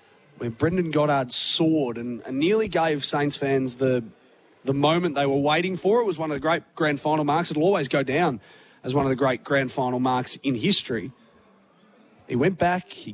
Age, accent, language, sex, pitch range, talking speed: 30-49, Australian, English, male, 125-175 Hz, 200 wpm